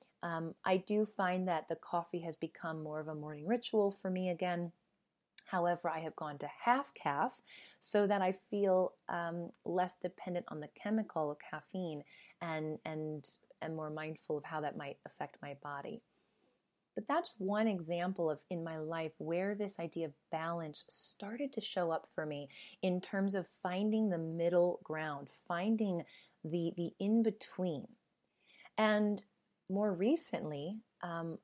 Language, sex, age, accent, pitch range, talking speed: English, female, 30-49, American, 160-195 Hz, 155 wpm